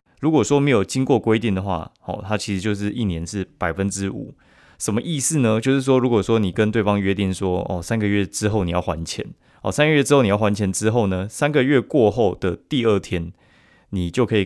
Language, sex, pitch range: Chinese, male, 90-115 Hz